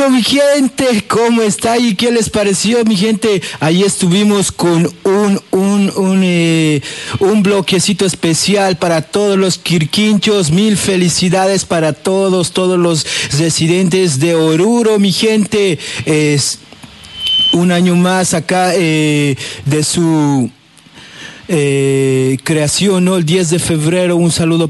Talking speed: 125 wpm